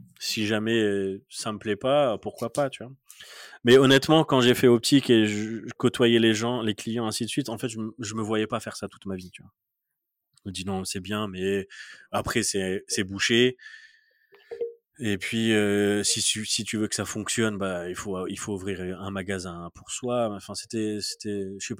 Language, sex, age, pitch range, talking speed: French, male, 20-39, 95-115 Hz, 210 wpm